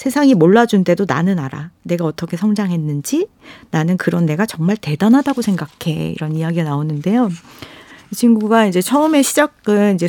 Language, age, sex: Korean, 40-59, female